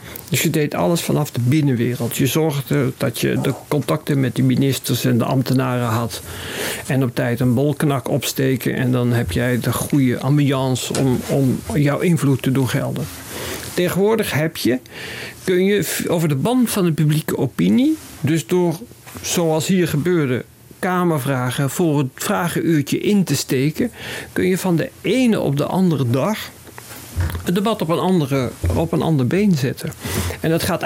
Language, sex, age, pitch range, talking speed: Dutch, male, 50-69, 130-170 Hz, 165 wpm